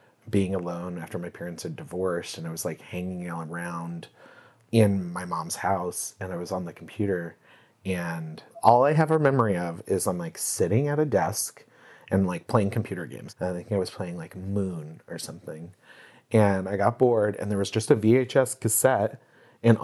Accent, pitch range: American, 95-120 Hz